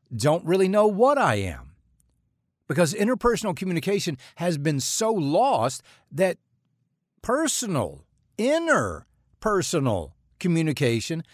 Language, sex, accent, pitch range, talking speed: English, male, American, 115-190 Hz, 95 wpm